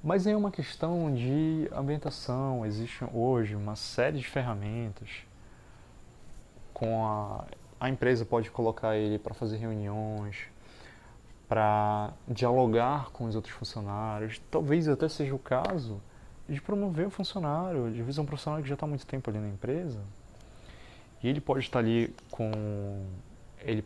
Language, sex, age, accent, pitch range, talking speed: Portuguese, male, 20-39, Brazilian, 105-135 Hz, 145 wpm